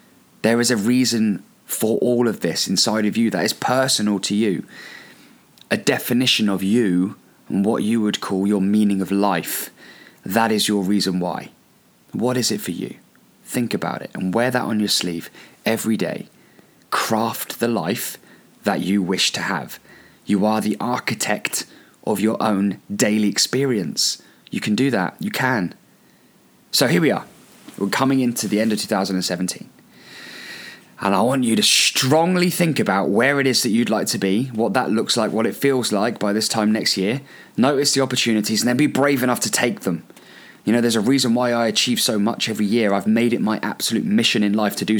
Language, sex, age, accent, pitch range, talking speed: English, male, 20-39, British, 100-120 Hz, 195 wpm